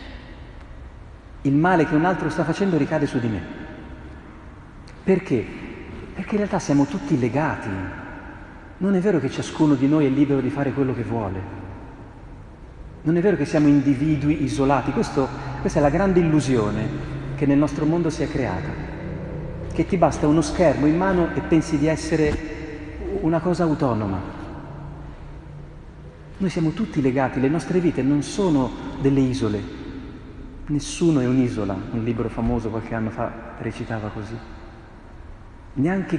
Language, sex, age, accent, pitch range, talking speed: Italian, male, 40-59, native, 105-150 Hz, 145 wpm